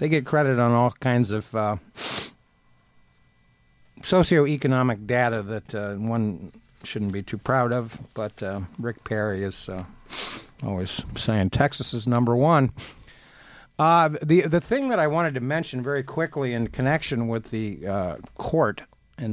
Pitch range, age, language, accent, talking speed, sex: 110-140 Hz, 50-69, English, American, 150 wpm, male